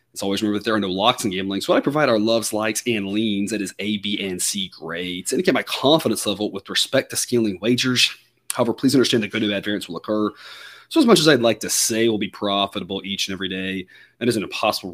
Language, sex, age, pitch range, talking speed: English, male, 20-39, 100-120 Hz, 260 wpm